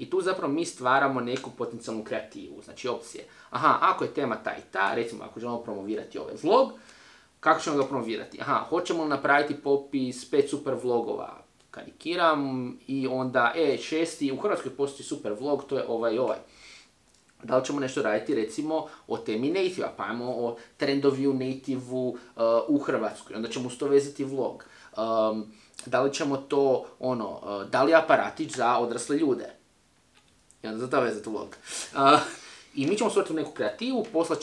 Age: 20-39